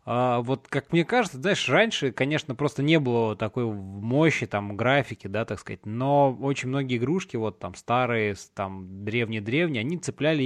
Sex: male